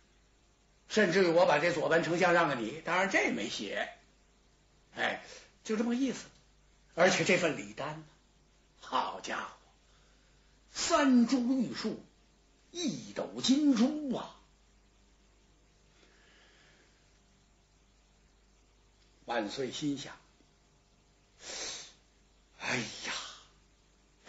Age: 60-79